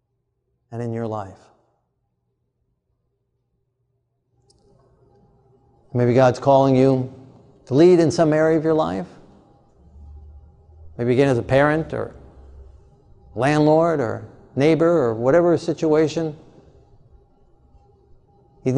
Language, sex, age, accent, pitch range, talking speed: English, male, 50-69, American, 125-155 Hz, 95 wpm